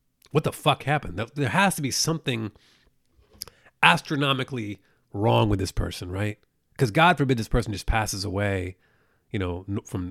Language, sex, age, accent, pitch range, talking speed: English, male, 30-49, American, 95-130 Hz, 155 wpm